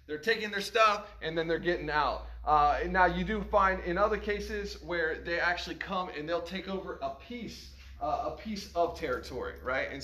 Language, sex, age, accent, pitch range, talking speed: English, male, 30-49, American, 165-210 Hz, 210 wpm